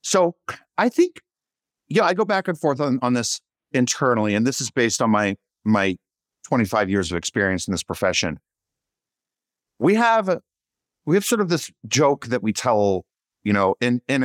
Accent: American